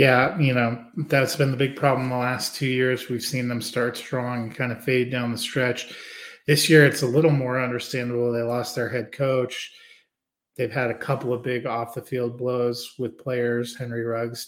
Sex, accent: male, American